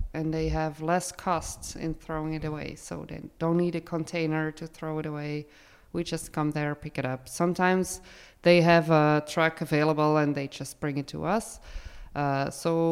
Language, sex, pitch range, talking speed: English, female, 150-175 Hz, 190 wpm